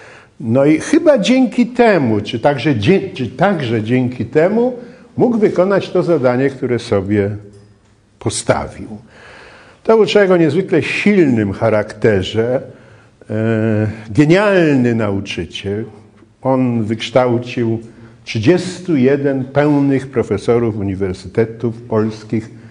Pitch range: 105-145 Hz